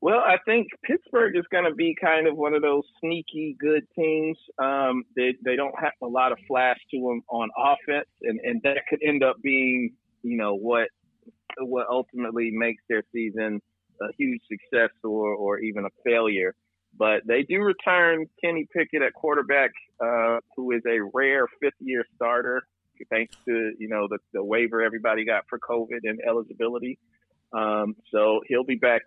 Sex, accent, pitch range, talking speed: male, American, 110-155 Hz, 180 wpm